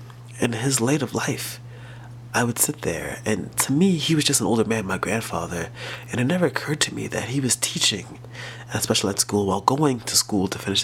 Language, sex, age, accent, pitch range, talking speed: English, male, 30-49, American, 115-125 Hz, 225 wpm